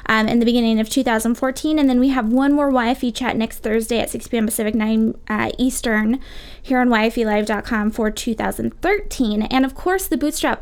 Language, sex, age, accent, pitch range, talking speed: English, female, 20-39, American, 245-315 Hz, 185 wpm